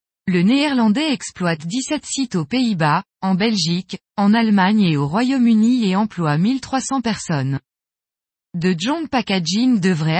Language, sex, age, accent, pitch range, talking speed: French, female, 20-39, French, 180-240 Hz, 130 wpm